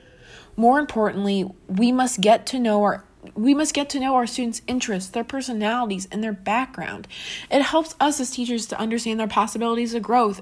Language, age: English, 20-39